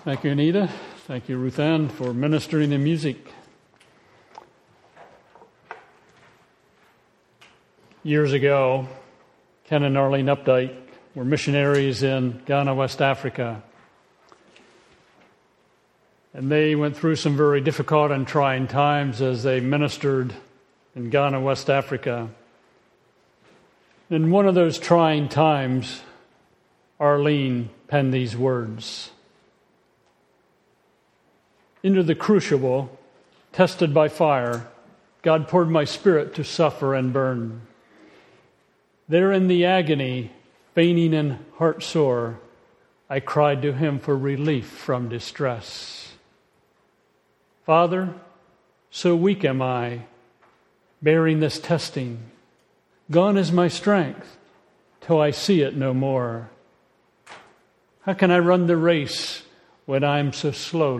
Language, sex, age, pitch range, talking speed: English, male, 50-69, 130-160 Hz, 105 wpm